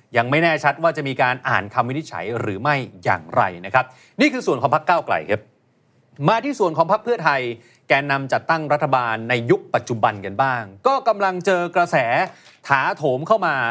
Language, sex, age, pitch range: Thai, male, 30-49, 135-190 Hz